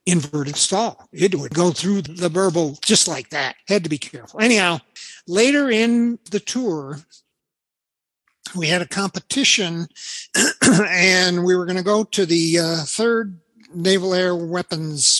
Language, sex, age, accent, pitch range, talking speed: English, male, 60-79, American, 155-190 Hz, 145 wpm